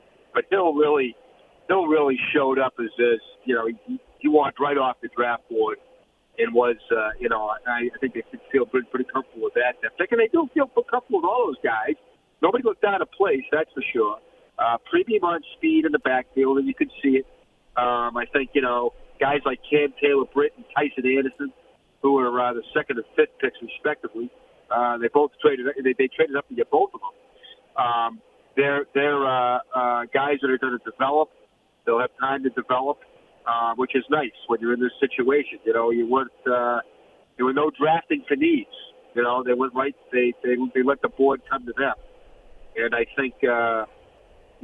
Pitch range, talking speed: 120-190 Hz, 200 wpm